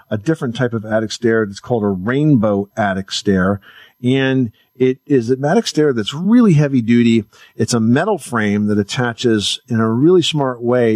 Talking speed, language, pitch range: 180 wpm, English, 110-135 Hz